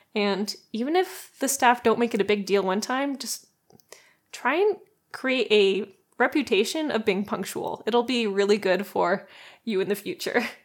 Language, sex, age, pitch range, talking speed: English, female, 20-39, 205-250 Hz, 175 wpm